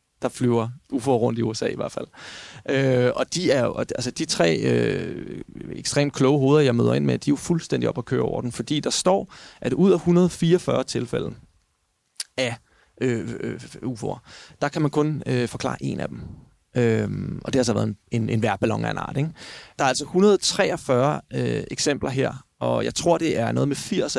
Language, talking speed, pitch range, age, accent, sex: Danish, 205 wpm, 115-140 Hz, 30-49, native, male